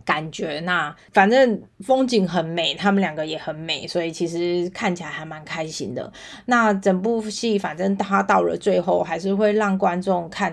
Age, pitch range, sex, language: 20-39, 175-215 Hz, female, Chinese